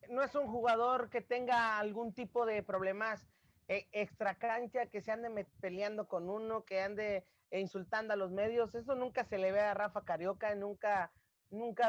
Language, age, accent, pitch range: Spanish, 30-49, Mexican, 200-245 Hz